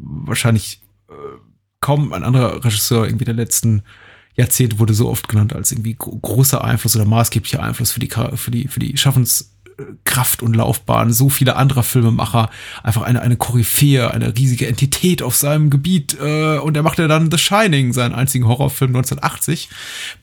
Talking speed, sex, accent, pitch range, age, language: 165 wpm, male, German, 115-140 Hz, 30-49, German